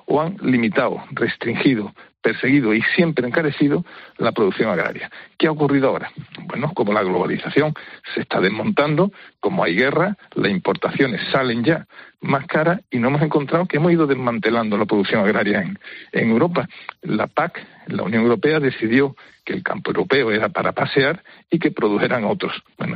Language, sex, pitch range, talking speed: Spanish, male, 115-165 Hz, 165 wpm